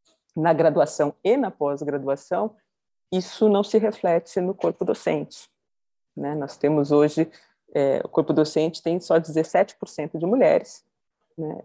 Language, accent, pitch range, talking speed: Portuguese, Brazilian, 145-175 Hz, 135 wpm